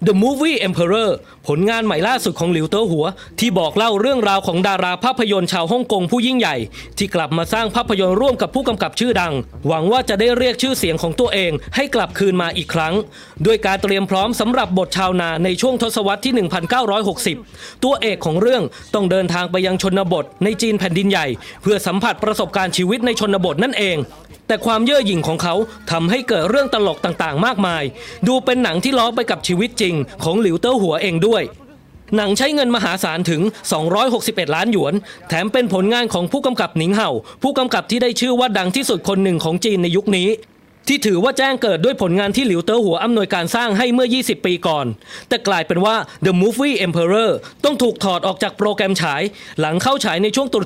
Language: English